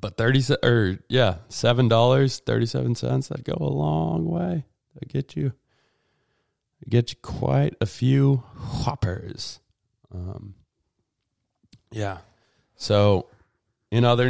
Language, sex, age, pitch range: English, male, 20-39, 95-125 Hz